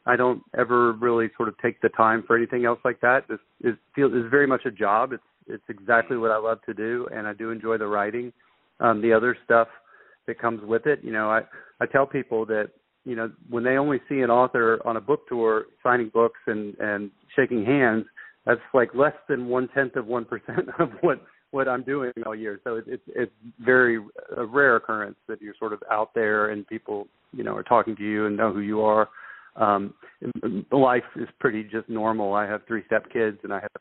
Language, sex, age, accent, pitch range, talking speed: English, male, 40-59, American, 110-125 Hz, 225 wpm